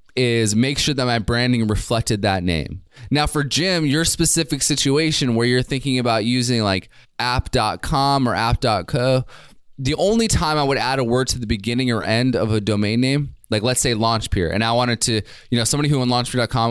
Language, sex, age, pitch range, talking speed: English, male, 20-39, 110-135 Hz, 200 wpm